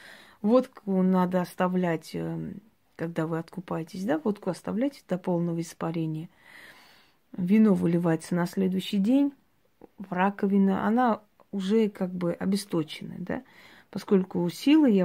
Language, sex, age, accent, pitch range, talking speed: Russian, female, 30-49, native, 180-225 Hz, 110 wpm